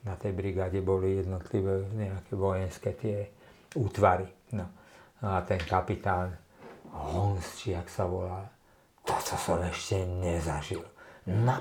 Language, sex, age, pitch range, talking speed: Czech, male, 50-69, 90-105 Hz, 110 wpm